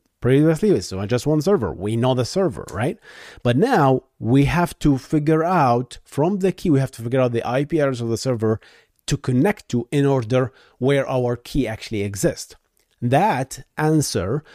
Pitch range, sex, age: 115-155 Hz, male, 30-49